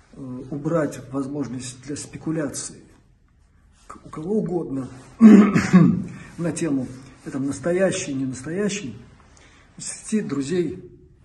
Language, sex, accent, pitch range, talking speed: Russian, male, native, 110-165 Hz, 85 wpm